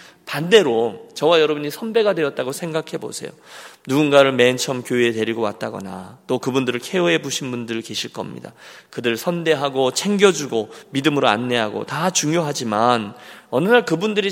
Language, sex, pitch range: Korean, male, 125-175 Hz